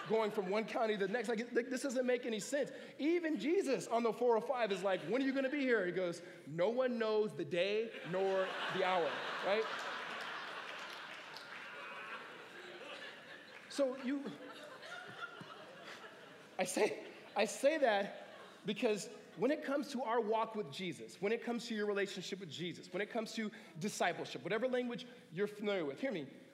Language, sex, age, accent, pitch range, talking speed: English, male, 30-49, American, 195-255 Hz, 170 wpm